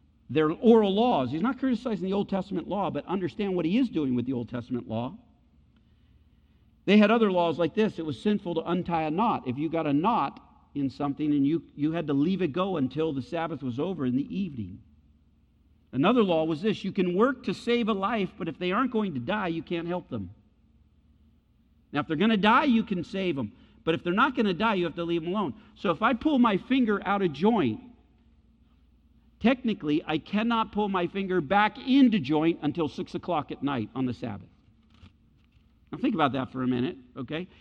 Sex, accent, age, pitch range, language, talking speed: male, American, 50-69, 145-235 Hz, English, 215 wpm